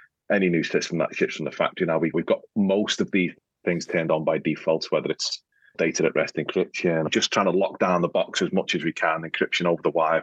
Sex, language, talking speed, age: male, English, 245 wpm, 30-49